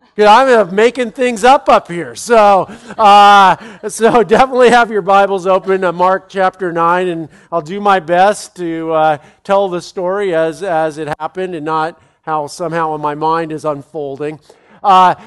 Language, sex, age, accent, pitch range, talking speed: English, male, 50-69, American, 175-215 Hz, 160 wpm